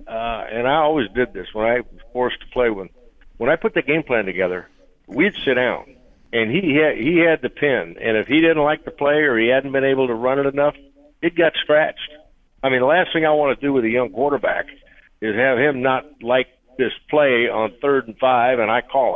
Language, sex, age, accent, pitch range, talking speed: English, male, 60-79, American, 125-150 Hz, 240 wpm